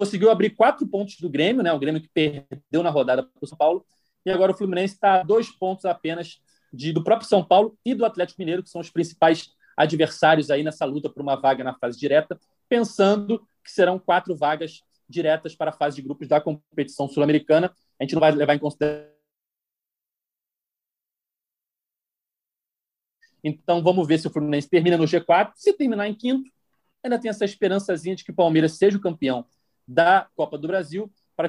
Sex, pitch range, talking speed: male, 155-200 Hz, 190 wpm